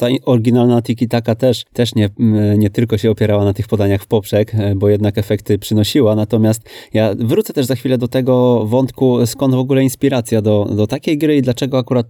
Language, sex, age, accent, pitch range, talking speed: Polish, male, 20-39, native, 110-135 Hz, 195 wpm